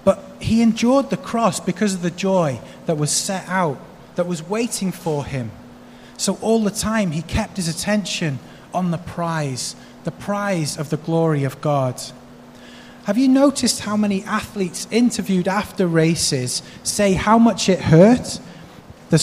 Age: 20-39